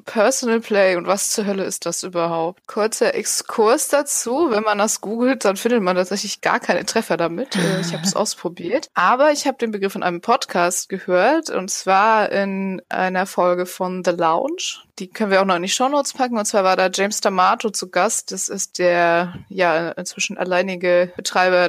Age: 20-39